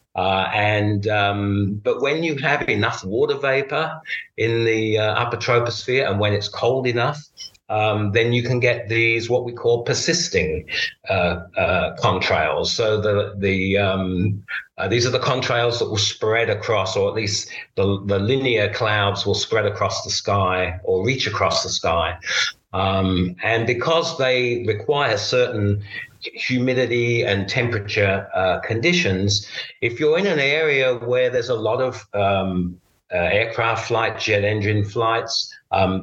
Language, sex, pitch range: English, male, 100-130 Hz